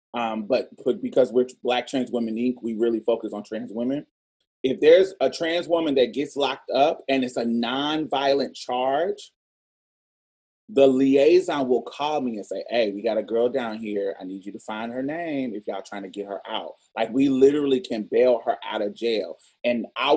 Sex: male